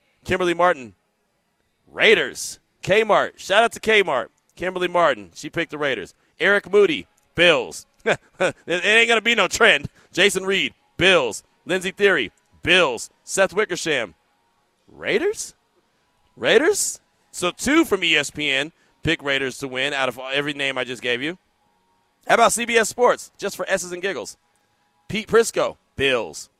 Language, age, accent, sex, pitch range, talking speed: English, 40-59, American, male, 165-230 Hz, 140 wpm